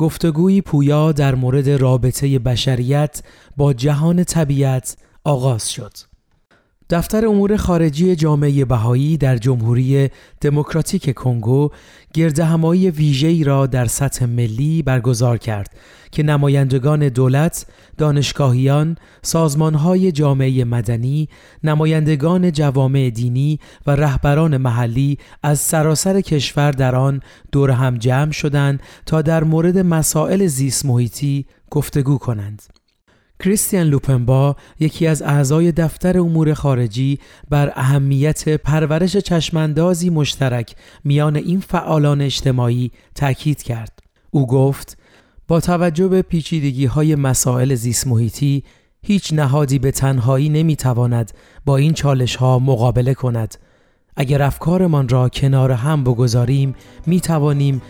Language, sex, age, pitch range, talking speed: Persian, male, 30-49, 130-155 Hz, 110 wpm